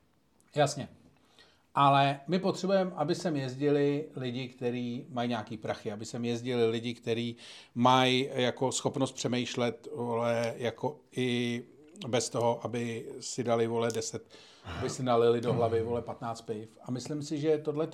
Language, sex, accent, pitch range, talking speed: Czech, male, native, 115-135 Hz, 145 wpm